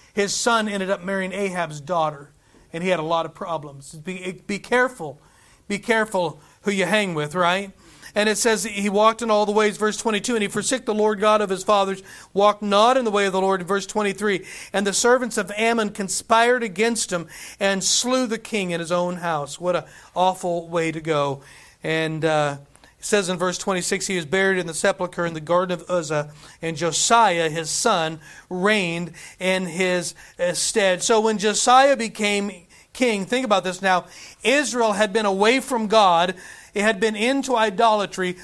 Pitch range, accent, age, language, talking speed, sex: 175-225 Hz, American, 40-59, English, 190 wpm, male